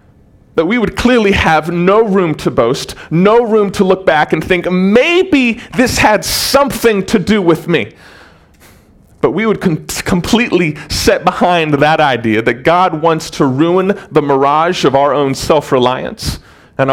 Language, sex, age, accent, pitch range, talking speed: English, male, 30-49, American, 115-165 Hz, 155 wpm